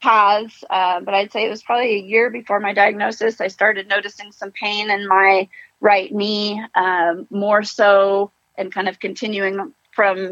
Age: 30-49